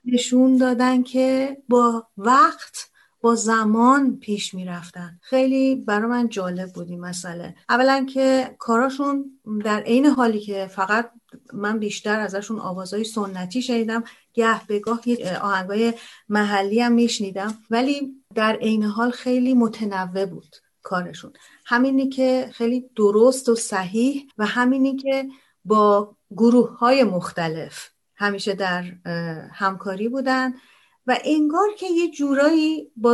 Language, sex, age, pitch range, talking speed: Persian, female, 40-59, 195-255 Hz, 125 wpm